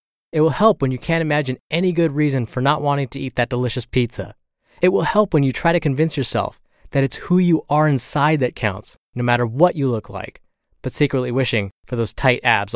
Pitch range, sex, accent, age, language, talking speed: 115-160 Hz, male, American, 20-39, English, 225 wpm